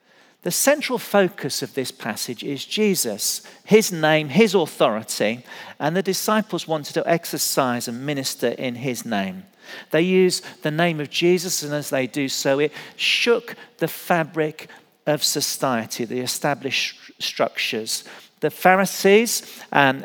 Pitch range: 130-180 Hz